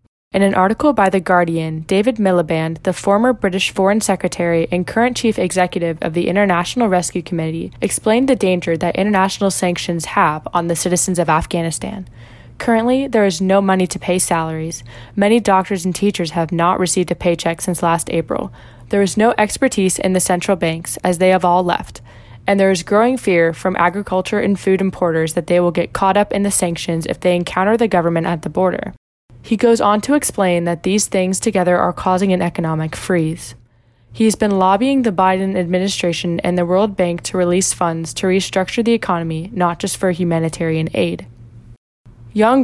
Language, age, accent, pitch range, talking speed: English, 10-29, American, 165-195 Hz, 185 wpm